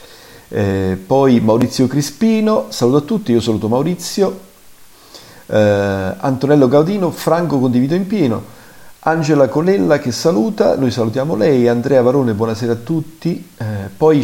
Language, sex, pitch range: Italian, male, 110-145 Hz